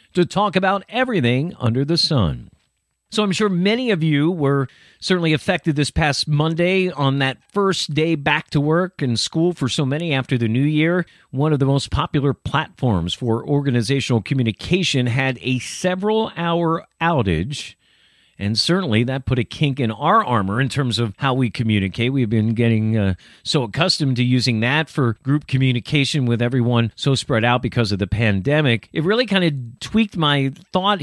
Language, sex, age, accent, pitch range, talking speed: English, male, 50-69, American, 125-165 Hz, 180 wpm